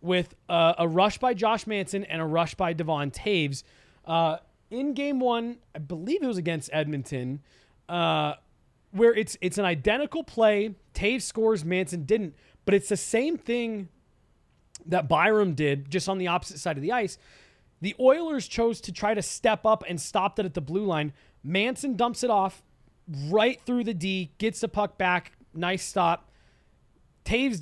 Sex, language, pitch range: male, English, 165-220 Hz